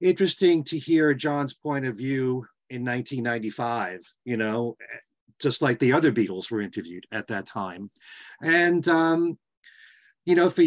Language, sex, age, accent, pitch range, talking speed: English, male, 40-59, American, 110-140 Hz, 145 wpm